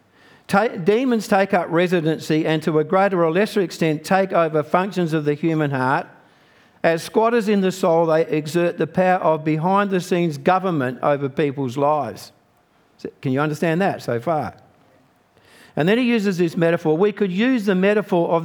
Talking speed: 165 wpm